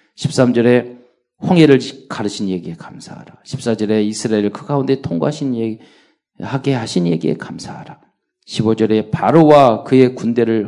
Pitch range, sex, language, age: 110-140 Hz, male, Korean, 40-59